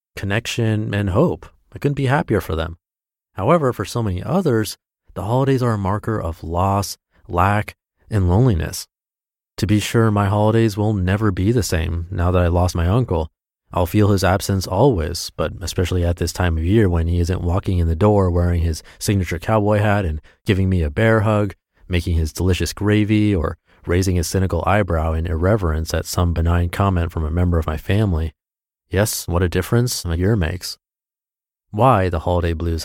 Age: 30-49